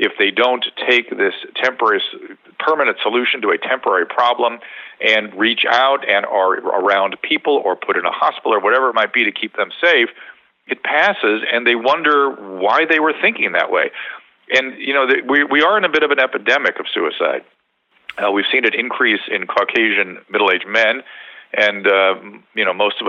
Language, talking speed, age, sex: English, 185 wpm, 40-59, male